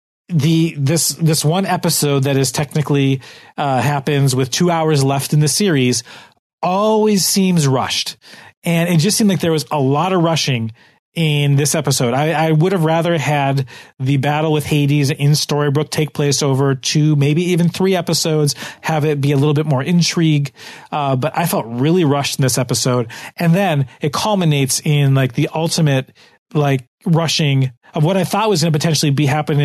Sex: male